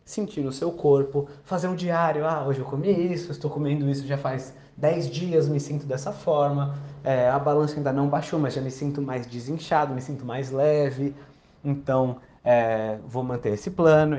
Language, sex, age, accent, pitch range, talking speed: Portuguese, male, 20-39, Brazilian, 130-180 Hz, 190 wpm